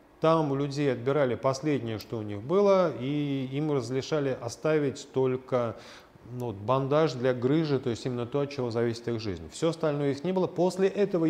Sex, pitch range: male, 120-160 Hz